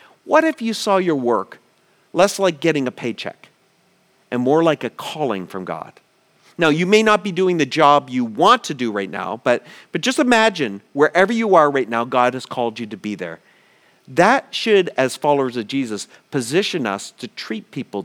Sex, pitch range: male, 135-205 Hz